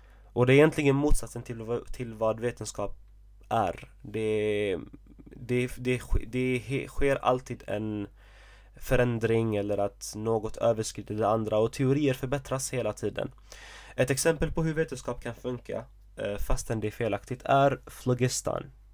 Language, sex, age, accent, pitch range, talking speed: Swedish, male, 20-39, native, 105-130 Hz, 140 wpm